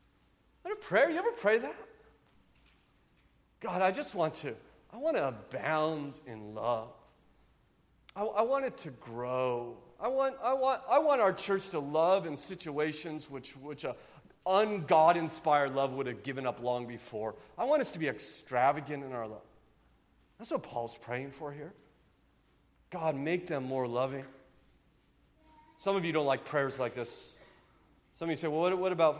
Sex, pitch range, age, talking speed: male, 120-155 Hz, 40-59, 165 wpm